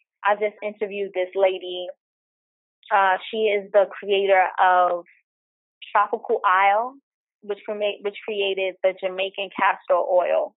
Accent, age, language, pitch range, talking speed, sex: American, 20-39, English, 185-220 Hz, 115 wpm, female